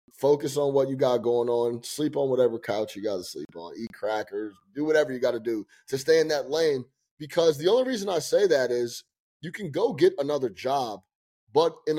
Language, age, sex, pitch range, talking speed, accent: English, 30-49, male, 120-160 Hz, 225 wpm, American